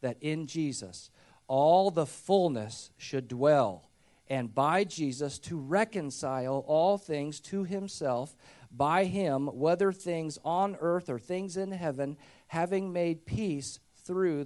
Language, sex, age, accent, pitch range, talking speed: English, male, 50-69, American, 125-160 Hz, 130 wpm